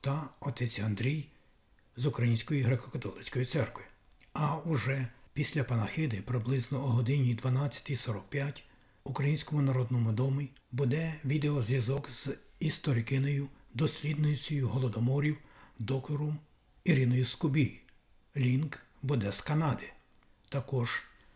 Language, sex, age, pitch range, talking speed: Ukrainian, male, 60-79, 120-140 Hz, 95 wpm